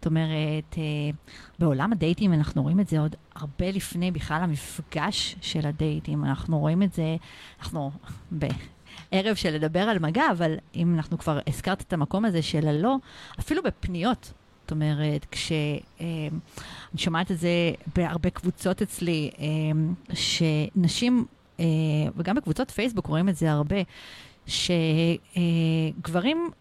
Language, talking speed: Hebrew, 125 wpm